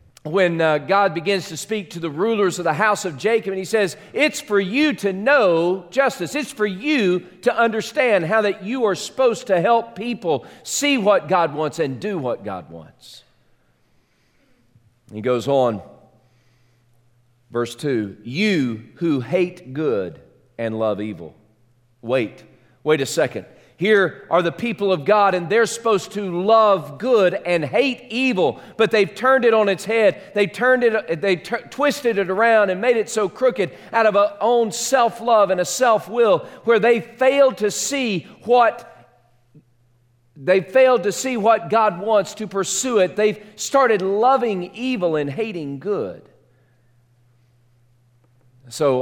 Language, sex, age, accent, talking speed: English, male, 40-59, American, 155 wpm